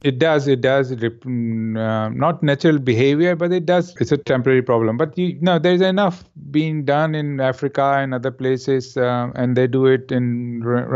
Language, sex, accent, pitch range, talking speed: English, male, Indian, 115-145 Hz, 195 wpm